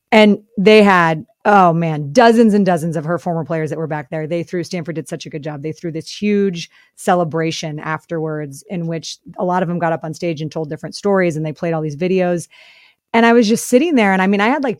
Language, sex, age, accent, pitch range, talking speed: English, female, 30-49, American, 165-200 Hz, 250 wpm